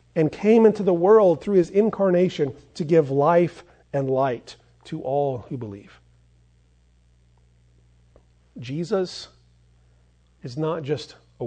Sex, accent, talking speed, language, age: male, American, 115 wpm, English, 40-59